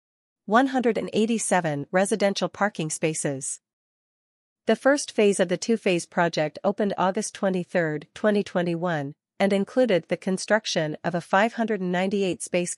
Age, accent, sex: 40-59, American, female